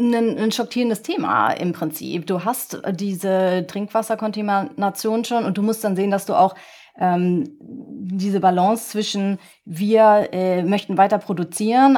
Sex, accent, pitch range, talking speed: female, German, 185-225 Hz, 140 wpm